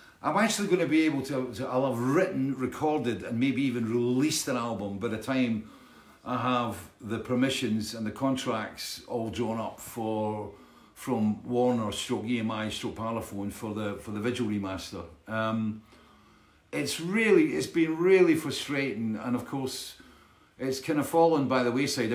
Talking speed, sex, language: 165 wpm, male, English